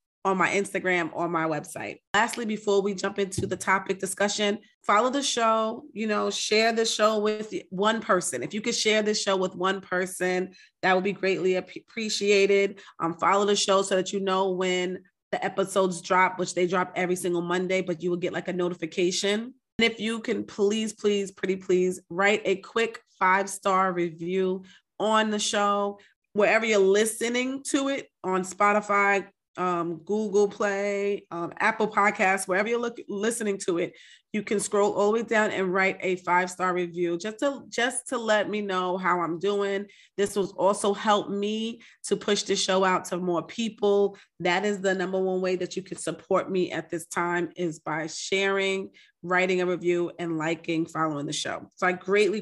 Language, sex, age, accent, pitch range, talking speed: English, female, 30-49, American, 180-210 Hz, 185 wpm